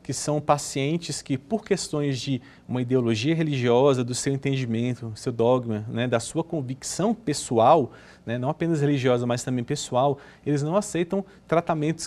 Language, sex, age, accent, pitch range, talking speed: Portuguese, male, 40-59, Brazilian, 140-185 Hz, 155 wpm